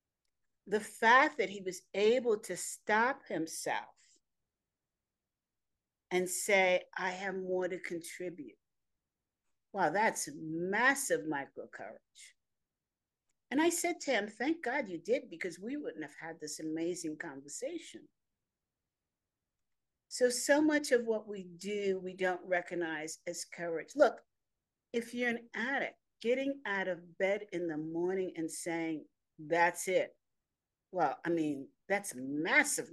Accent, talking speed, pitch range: American, 130 wpm, 170-235 Hz